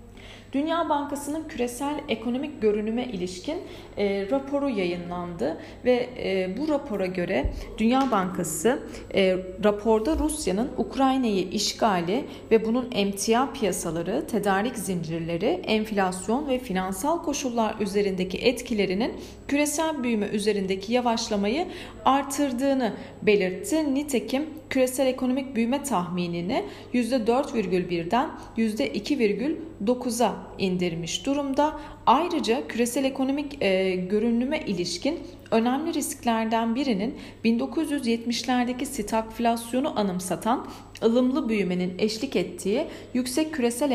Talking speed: 90 wpm